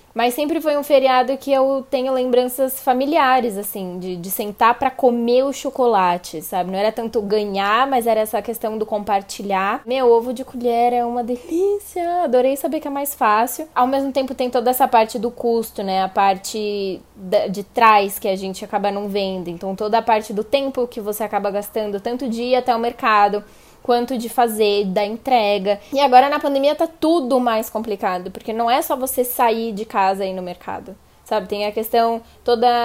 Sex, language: female, Portuguese